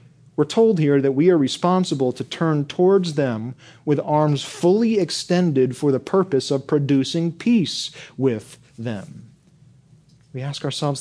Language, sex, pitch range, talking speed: English, male, 135-180 Hz, 140 wpm